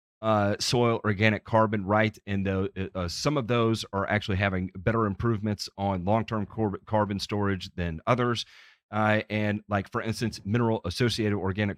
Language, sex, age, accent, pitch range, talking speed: English, male, 40-59, American, 95-110 Hz, 150 wpm